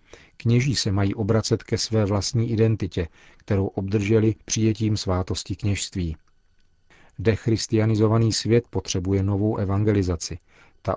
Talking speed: 105 wpm